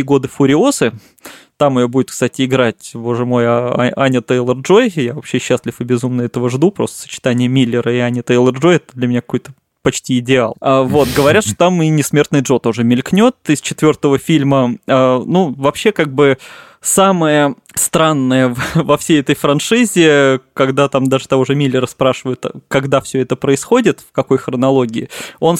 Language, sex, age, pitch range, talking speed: Russian, male, 20-39, 125-150 Hz, 160 wpm